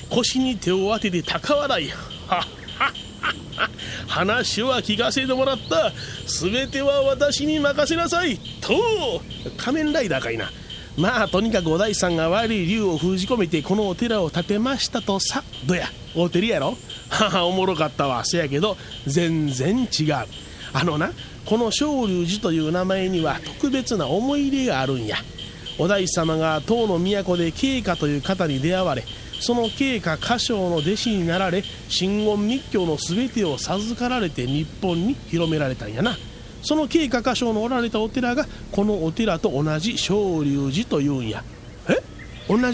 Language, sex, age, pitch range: Japanese, male, 30-49, 160-235 Hz